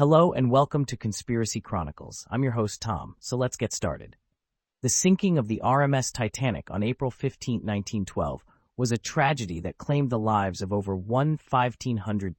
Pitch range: 100-130 Hz